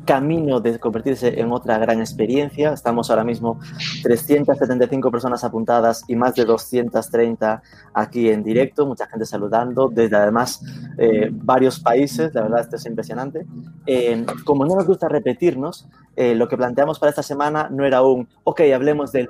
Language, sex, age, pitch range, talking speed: Spanish, male, 30-49, 115-145 Hz, 160 wpm